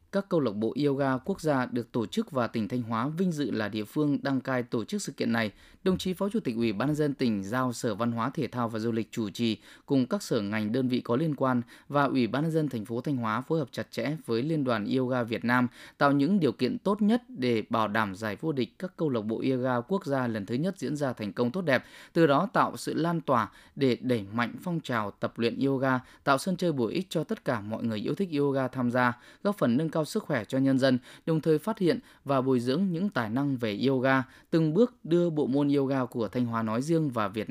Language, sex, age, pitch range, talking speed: Vietnamese, male, 20-39, 120-160 Hz, 265 wpm